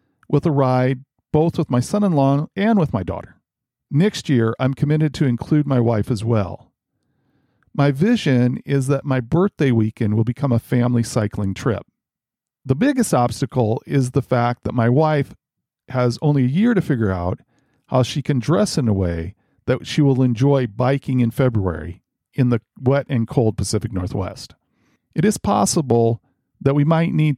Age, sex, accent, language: 50-69, male, American, English